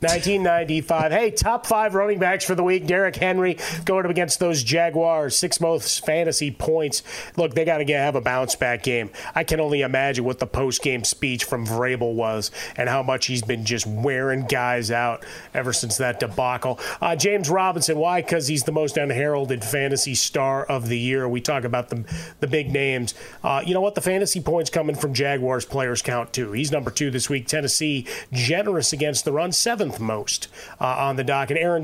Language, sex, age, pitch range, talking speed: English, male, 30-49, 130-160 Hz, 200 wpm